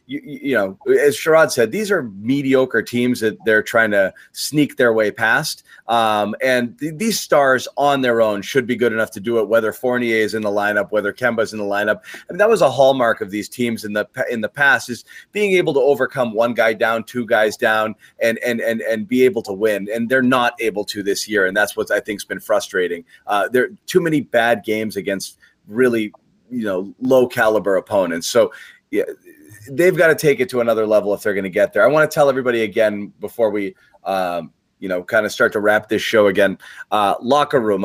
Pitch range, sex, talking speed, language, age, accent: 110-140 Hz, male, 225 wpm, English, 30-49, American